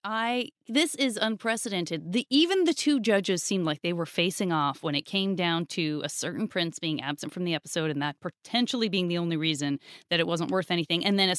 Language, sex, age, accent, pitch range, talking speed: English, female, 30-49, American, 175-235 Hz, 225 wpm